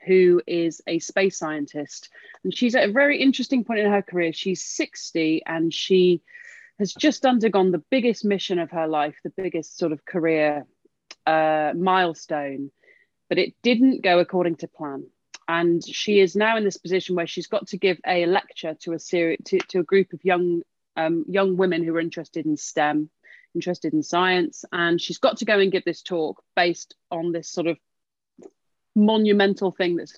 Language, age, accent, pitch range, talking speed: English, 30-49, British, 165-200 Hz, 185 wpm